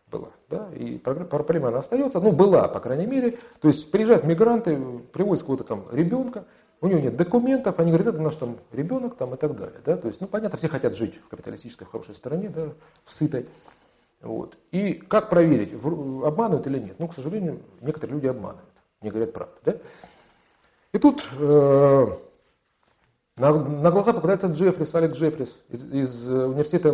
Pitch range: 135-190 Hz